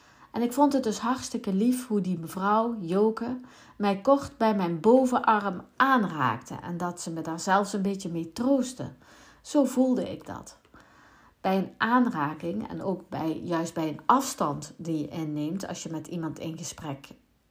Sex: female